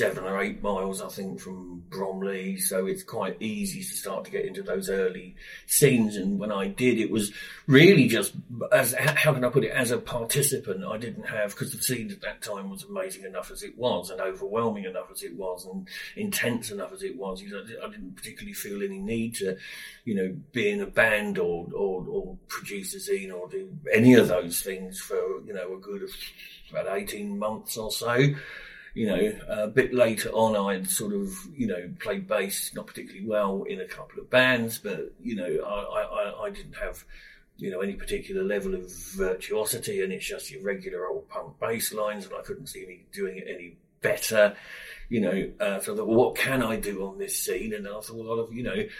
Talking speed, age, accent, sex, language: 215 wpm, 50-69, British, male, English